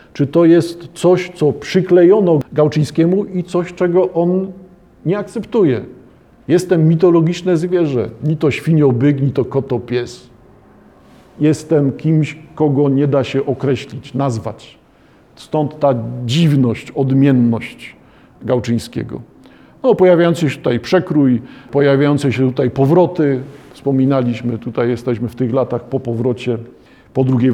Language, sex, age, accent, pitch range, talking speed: Polish, male, 50-69, native, 130-160 Hz, 120 wpm